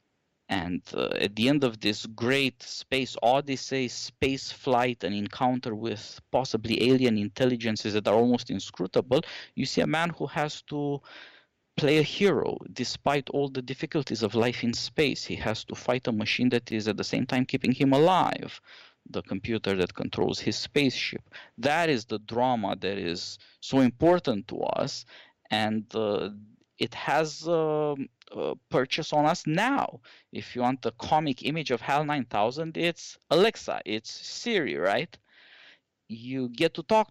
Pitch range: 120-160 Hz